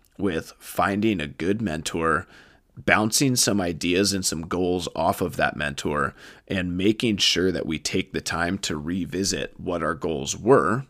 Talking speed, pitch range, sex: 160 wpm, 90-115 Hz, male